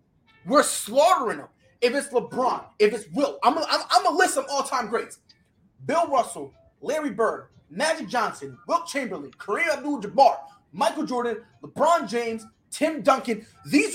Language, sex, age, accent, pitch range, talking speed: English, male, 30-49, American, 210-325 Hz, 150 wpm